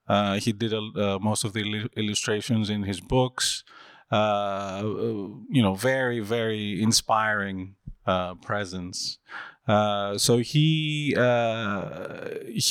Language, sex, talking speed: English, male, 115 wpm